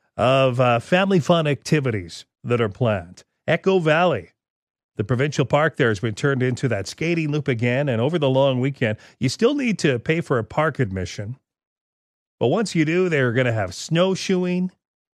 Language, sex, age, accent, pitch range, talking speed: English, male, 40-59, American, 115-155 Hz, 180 wpm